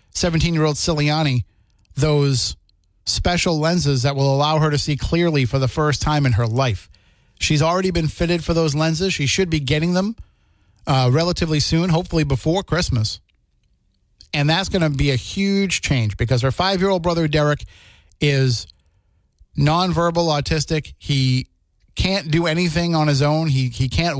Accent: American